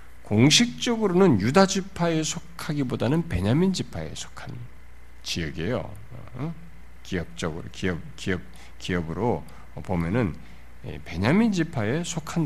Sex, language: male, Korean